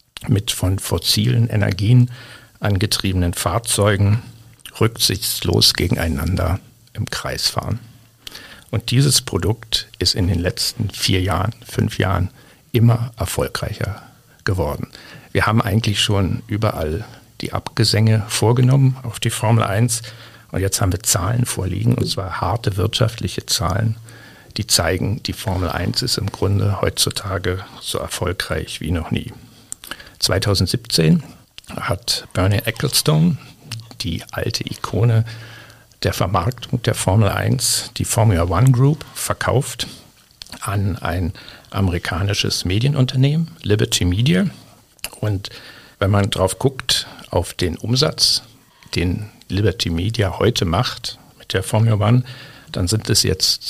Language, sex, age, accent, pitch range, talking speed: German, male, 60-79, German, 100-120 Hz, 120 wpm